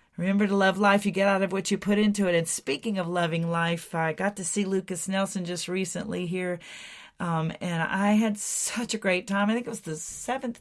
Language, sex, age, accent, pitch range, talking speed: English, female, 40-59, American, 160-200 Hz, 230 wpm